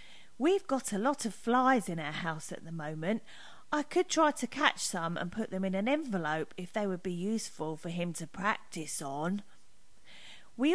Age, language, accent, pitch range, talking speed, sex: 40-59, English, British, 180-300 Hz, 195 wpm, female